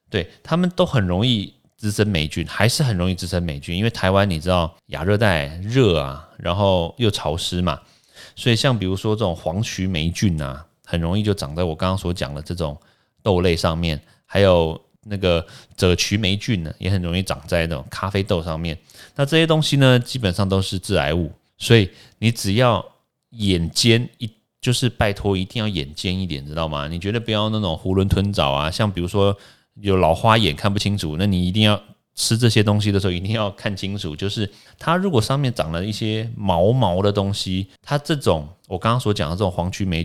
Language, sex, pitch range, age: Chinese, male, 85-110 Hz, 30-49